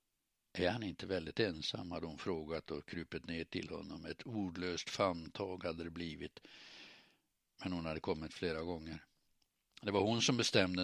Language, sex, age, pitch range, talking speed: Swedish, male, 60-79, 85-105 Hz, 165 wpm